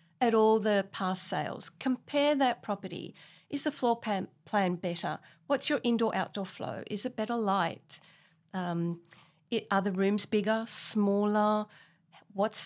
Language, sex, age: English, female, 40-59